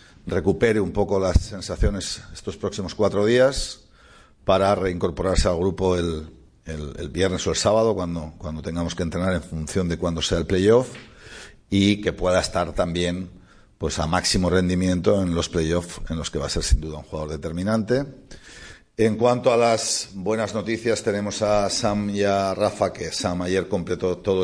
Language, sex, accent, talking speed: Spanish, male, Spanish, 175 wpm